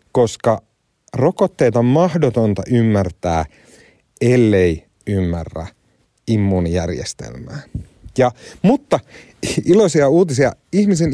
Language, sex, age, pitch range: Finnish, male, 30-49, 100-135 Hz